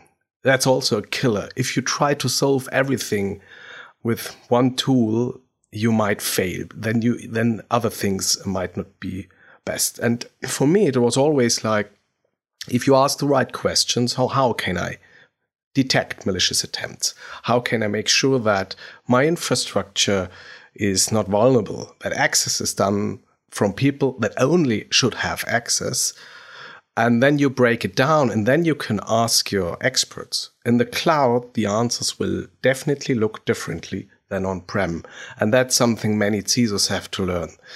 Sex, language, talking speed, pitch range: male, English, 155 wpm, 105-130 Hz